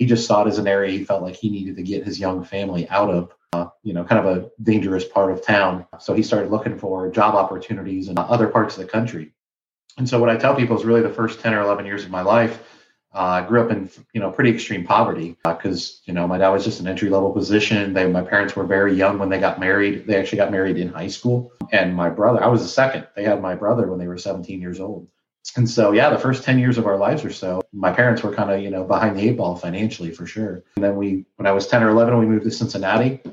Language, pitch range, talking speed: English, 95-110 Hz, 275 wpm